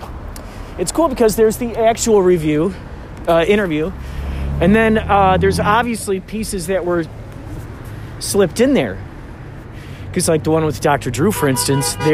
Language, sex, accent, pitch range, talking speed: English, male, American, 115-190 Hz, 145 wpm